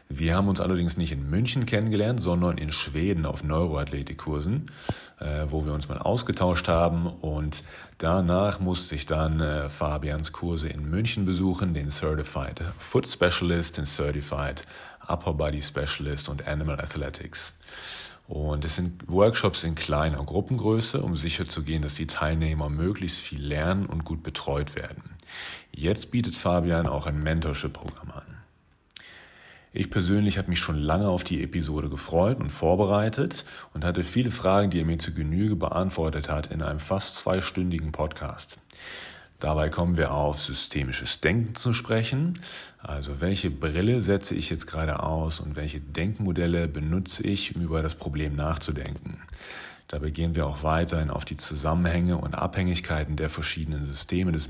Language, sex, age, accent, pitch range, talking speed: German, male, 40-59, German, 75-90 Hz, 150 wpm